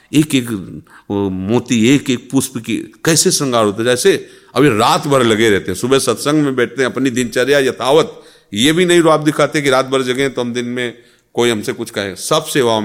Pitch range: 105-130 Hz